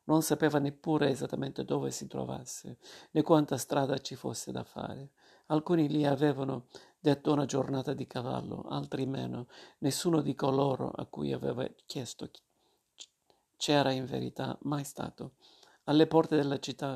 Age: 50-69